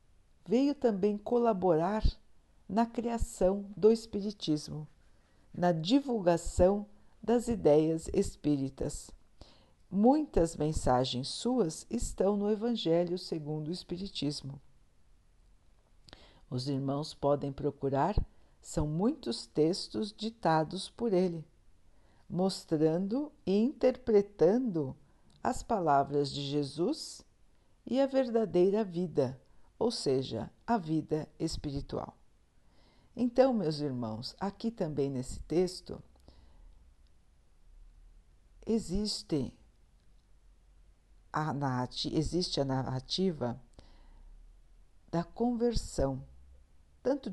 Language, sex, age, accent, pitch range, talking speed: Portuguese, female, 60-79, Brazilian, 130-210 Hz, 80 wpm